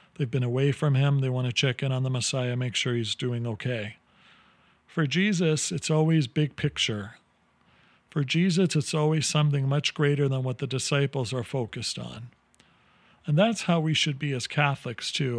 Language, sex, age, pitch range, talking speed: English, male, 40-59, 125-155 Hz, 185 wpm